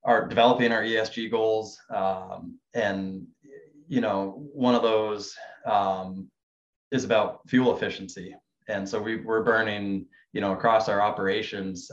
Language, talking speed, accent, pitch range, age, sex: English, 135 wpm, American, 95-120 Hz, 20-39, male